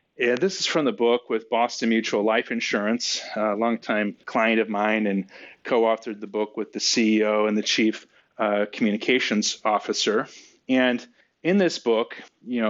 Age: 30-49